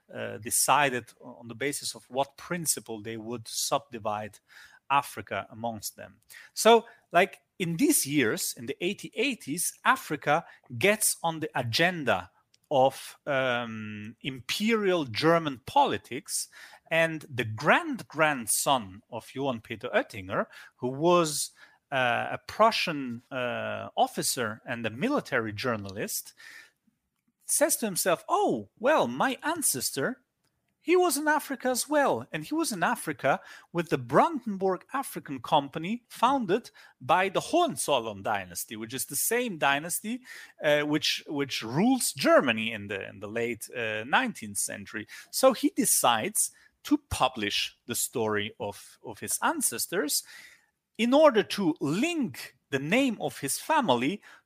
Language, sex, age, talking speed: English, male, 30-49, 130 wpm